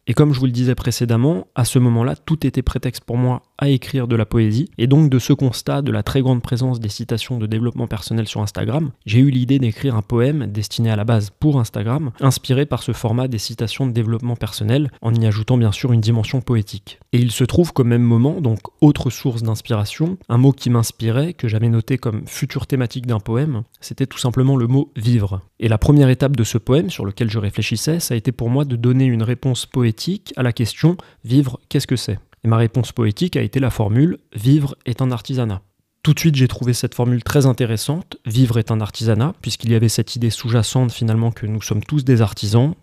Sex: male